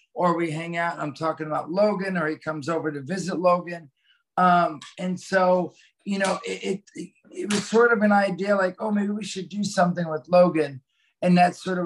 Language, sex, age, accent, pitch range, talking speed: English, male, 50-69, American, 150-175 Hz, 215 wpm